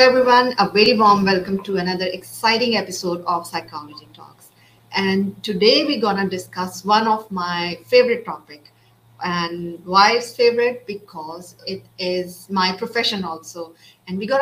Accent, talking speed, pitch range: Indian, 150 wpm, 175-220 Hz